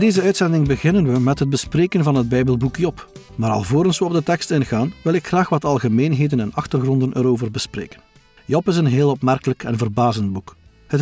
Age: 50-69